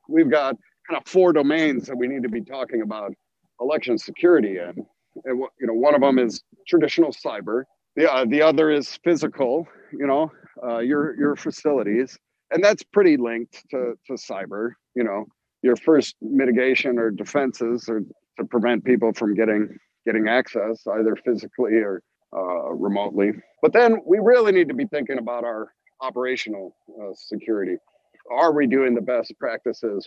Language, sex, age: English, male, 50-69